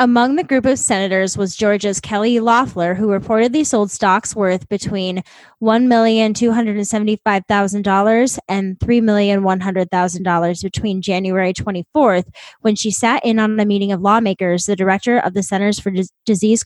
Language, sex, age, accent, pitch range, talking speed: English, female, 10-29, American, 195-235 Hz, 135 wpm